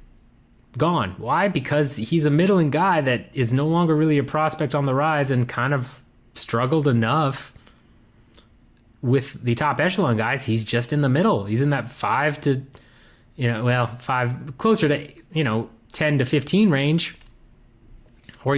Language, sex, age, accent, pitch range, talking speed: English, male, 30-49, American, 120-155 Hz, 160 wpm